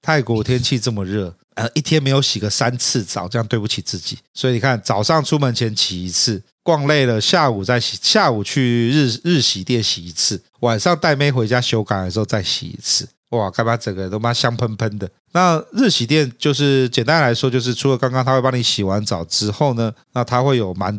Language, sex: Chinese, male